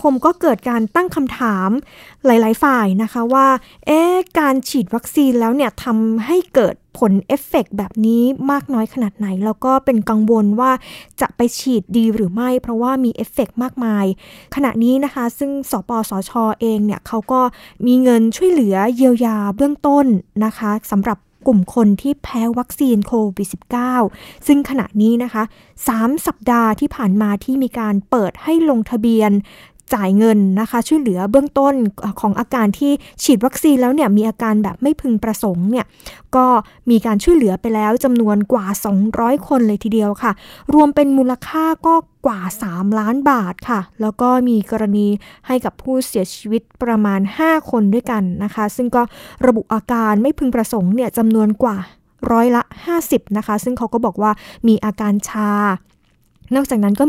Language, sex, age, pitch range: Thai, female, 20-39, 215-265 Hz